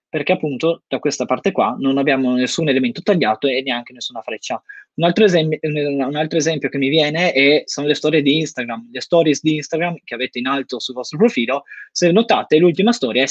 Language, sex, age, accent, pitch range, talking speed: Italian, male, 20-39, native, 135-165 Hz, 210 wpm